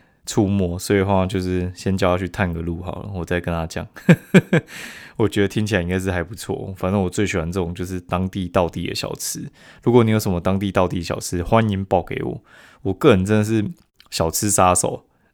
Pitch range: 90-105 Hz